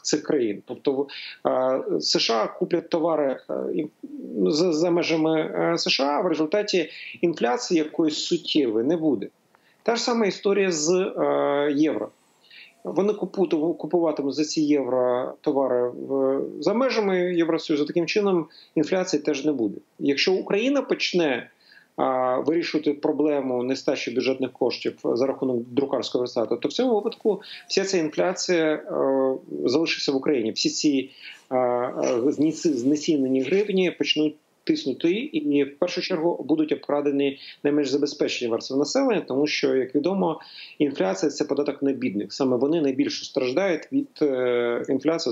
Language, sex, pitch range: Ukrainian, male, 135-185 Hz